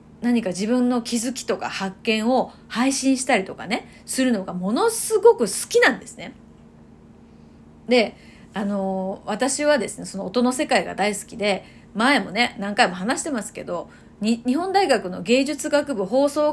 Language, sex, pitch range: Japanese, female, 205-280 Hz